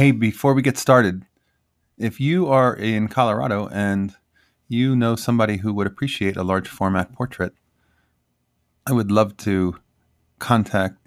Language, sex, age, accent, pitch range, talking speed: English, male, 30-49, American, 90-120 Hz, 140 wpm